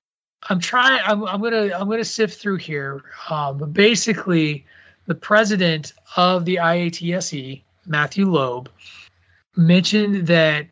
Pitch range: 145-180 Hz